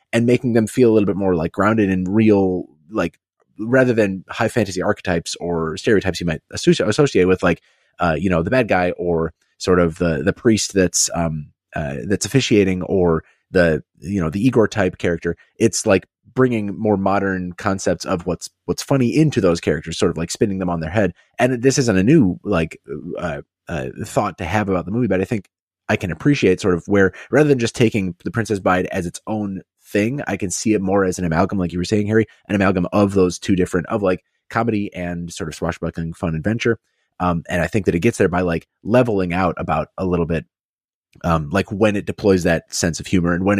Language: English